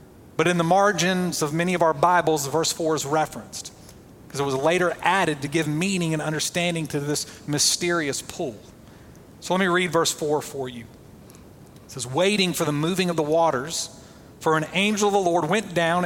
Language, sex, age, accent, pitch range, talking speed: English, male, 40-59, American, 145-185 Hz, 195 wpm